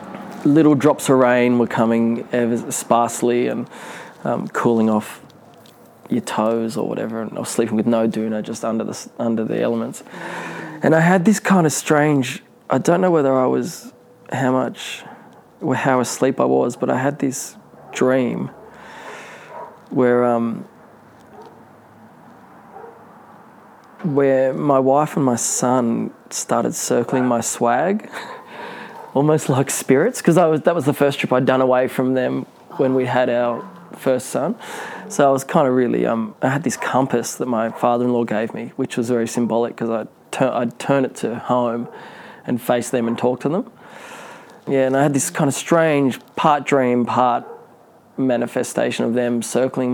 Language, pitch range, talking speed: English, 115-135 Hz, 160 wpm